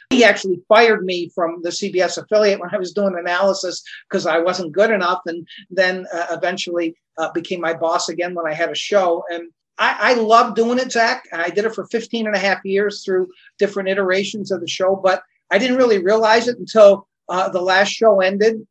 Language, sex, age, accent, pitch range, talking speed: English, male, 50-69, American, 170-215 Hz, 210 wpm